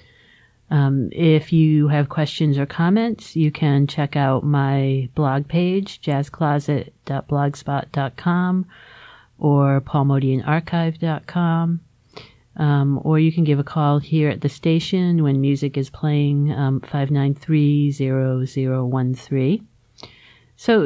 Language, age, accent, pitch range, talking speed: English, 50-69, American, 135-155 Hz, 120 wpm